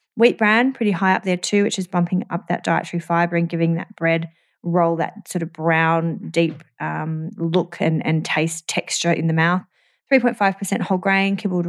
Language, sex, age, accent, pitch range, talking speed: English, female, 20-39, Australian, 165-195 Hz, 190 wpm